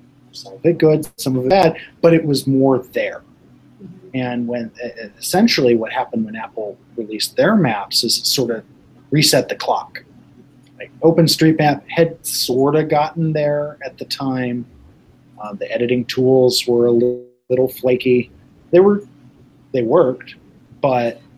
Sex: male